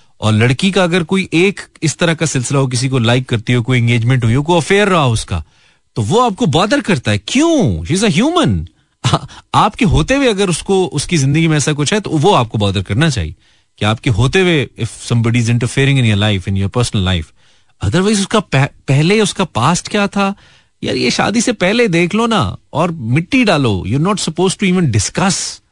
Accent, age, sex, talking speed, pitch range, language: native, 40-59, male, 170 wpm, 115-175 Hz, Hindi